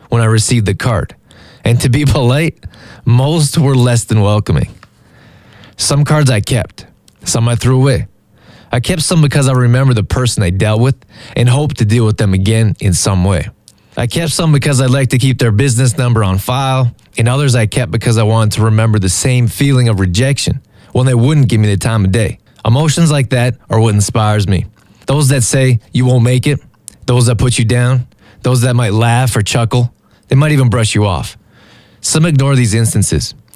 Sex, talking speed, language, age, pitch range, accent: male, 205 wpm, English, 20-39, 110-130 Hz, American